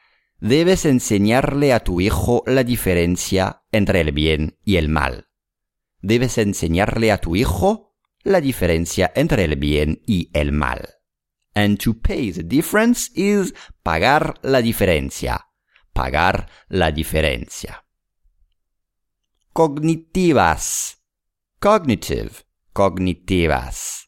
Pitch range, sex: 80-120 Hz, male